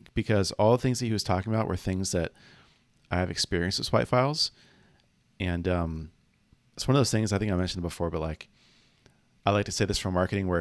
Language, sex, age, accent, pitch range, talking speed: English, male, 30-49, American, 90-115 Hz, 225 wpm